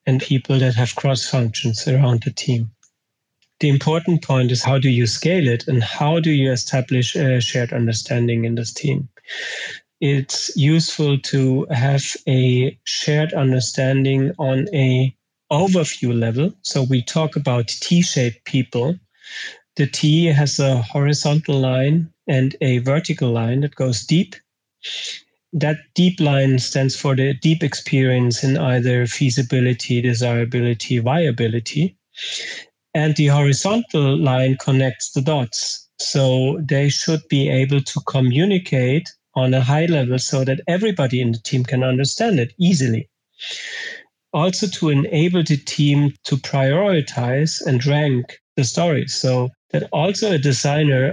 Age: 40-59